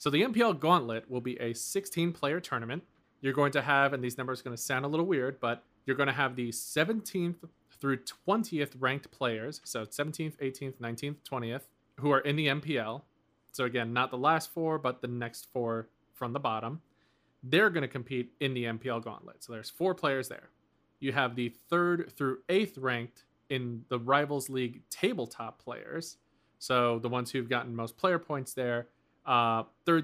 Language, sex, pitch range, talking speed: English, male, 115-145 Hz, 190 wpm